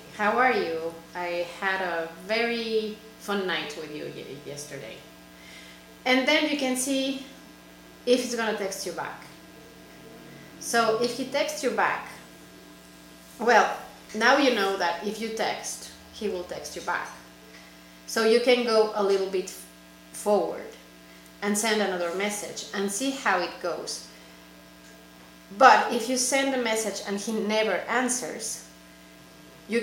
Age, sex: 30-49, female